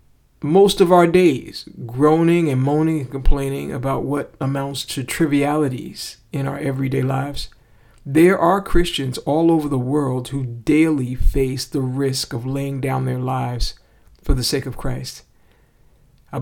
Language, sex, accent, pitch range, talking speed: English, male, American, 125-150 Hz, 150 wpm